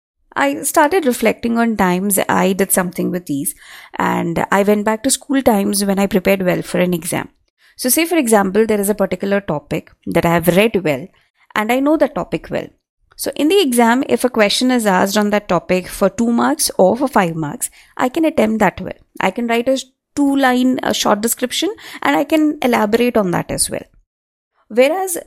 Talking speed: 200 wpm